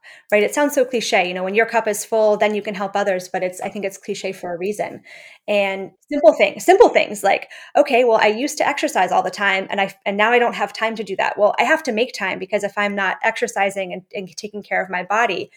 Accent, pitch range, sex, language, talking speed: American, 195-225 Hz, female, English, 270 wpm